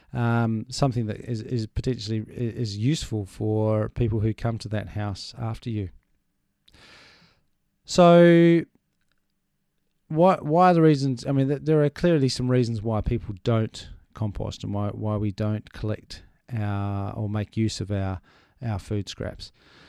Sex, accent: male, Australian